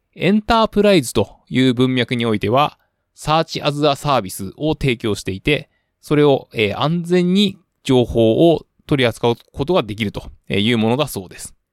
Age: 20-39